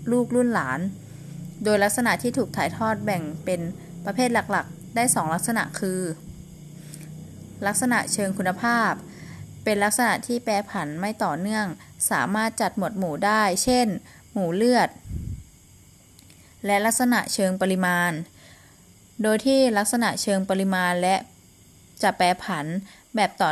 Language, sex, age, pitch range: Thai, female, 20-39, 175-225 Hz